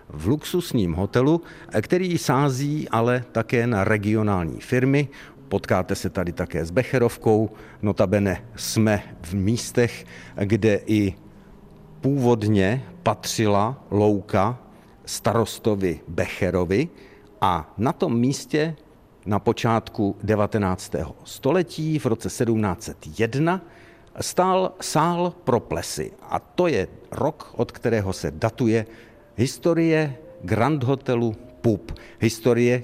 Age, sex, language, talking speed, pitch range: 50-69, male, Czech, 100 wpm, 105-135 Hz